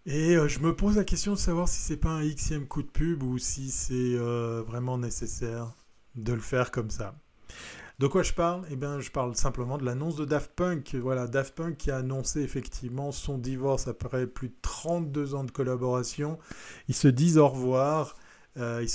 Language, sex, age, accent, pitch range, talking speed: French, male, 20-39, French, 125-150 Hz, 195 wpm